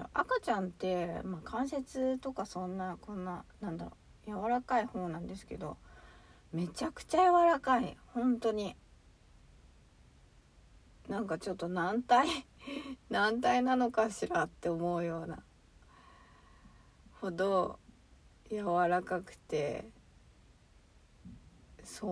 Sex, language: female, Japanese